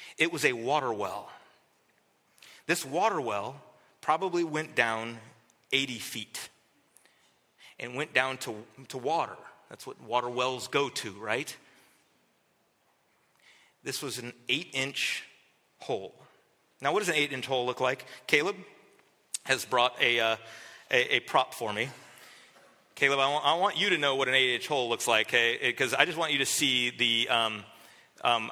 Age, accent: 30-49, American